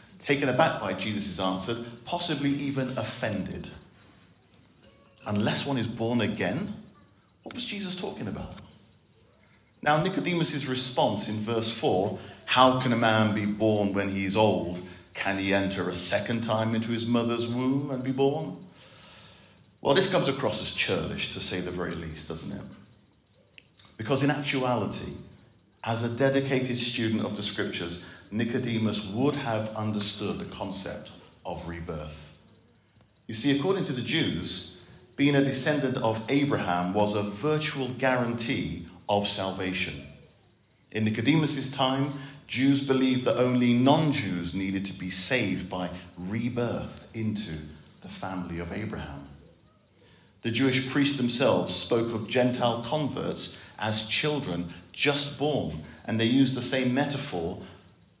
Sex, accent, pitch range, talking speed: male, British, 95-130 Hz, 135 wpm